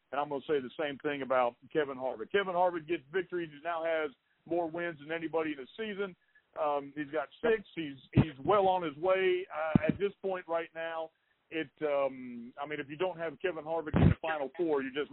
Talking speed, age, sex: 225 wpm, 50-69, male